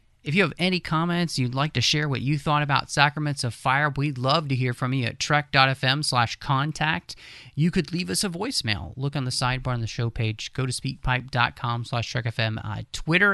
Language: English